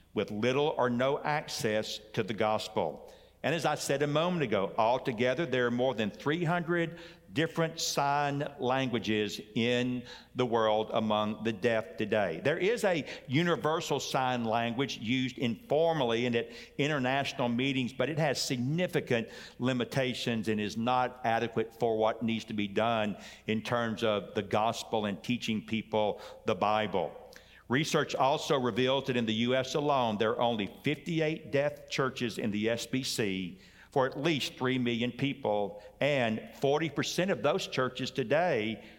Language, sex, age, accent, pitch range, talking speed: English, male, 60-79, American, 110-145 Hz, 150 wpm